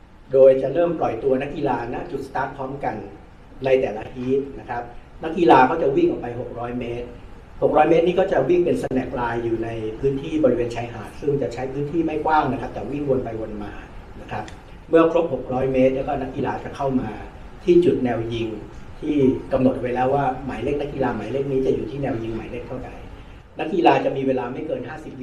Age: 60-79